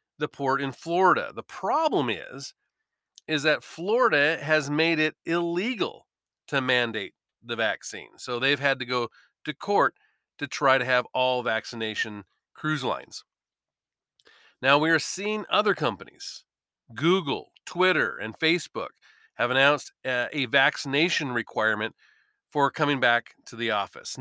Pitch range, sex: 130-175 Hz, male